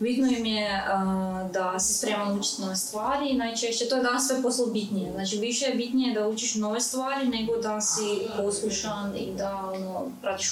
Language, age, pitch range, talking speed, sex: Croatian, 20-39, 195-230 Hz, 185 wpm, female